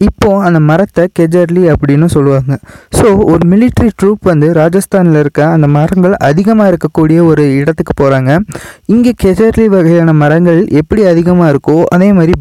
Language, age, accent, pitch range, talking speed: Tamil, 20-39, native, 155-190 Hz, 140 wpm